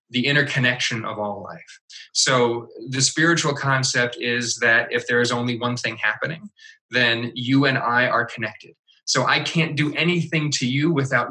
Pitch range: 120-160 Hz